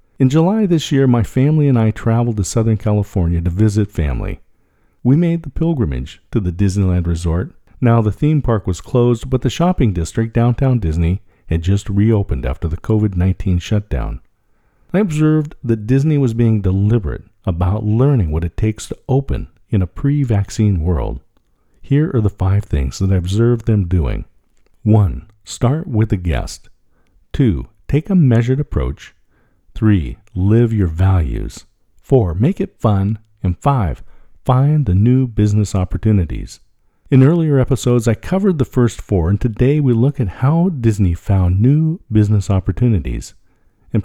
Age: 50-69